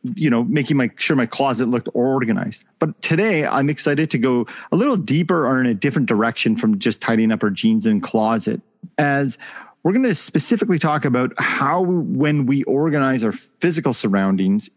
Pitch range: 115-180 Hz